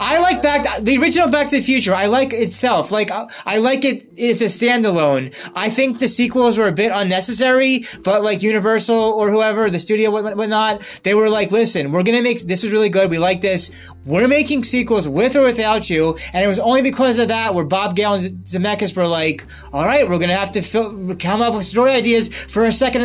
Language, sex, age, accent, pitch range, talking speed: English, male, 20-39, American, 185-230 Hz, 235 wpm